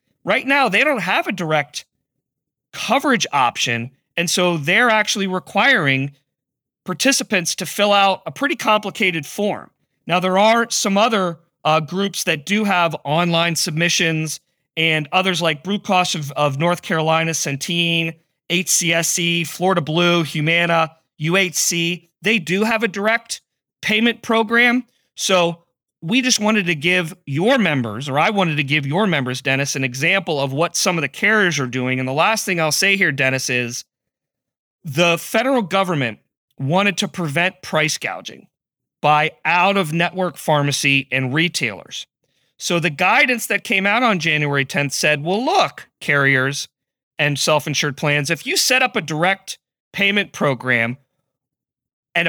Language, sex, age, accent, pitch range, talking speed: English, male, 40-59, American, 150-195 Hz, 150 wpm